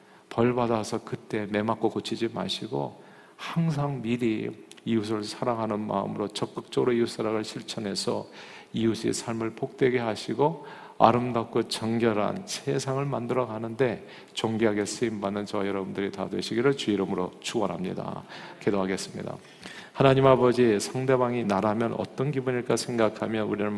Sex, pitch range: male, 110-135 Hz